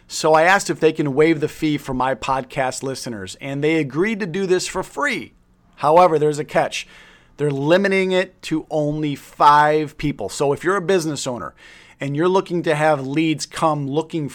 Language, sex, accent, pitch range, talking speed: English, male, American, 135-160 Hz, 190 wpm